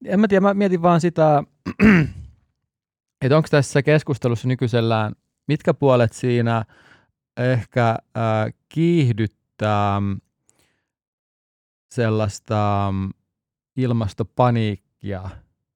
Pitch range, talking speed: 100-130 Hz, 75 wpm